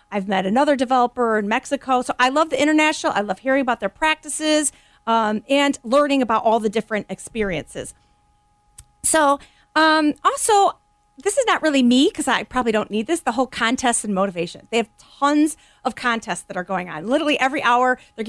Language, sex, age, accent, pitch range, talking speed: English, female, 40-59, American, 200-280 Hz, 185 wpm